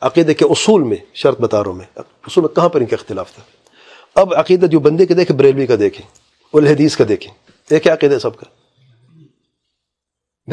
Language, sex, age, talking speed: English, male, 40-59, 190 wpm